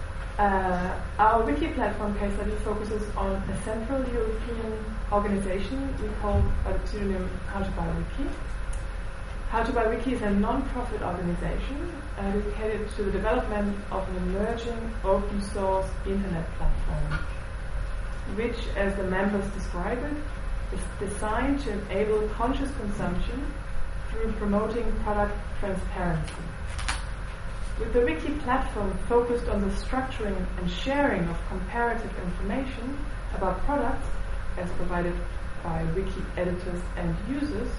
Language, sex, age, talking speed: English, female, 20-39, 120 wpm